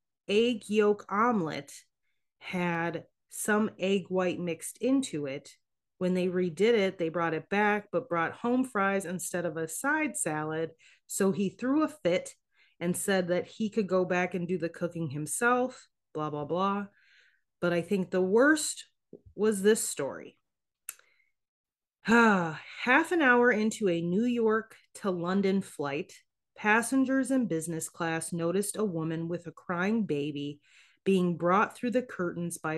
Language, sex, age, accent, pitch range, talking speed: English, female, 30-49, American, 170-225 Hz, 150 wpm